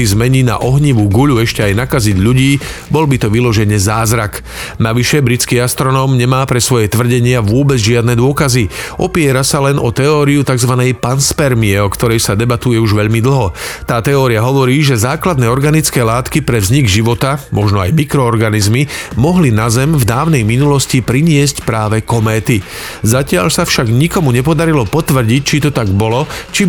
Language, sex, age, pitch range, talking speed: Slovak, male, 40-59, 115-140 Hz, 155 wpm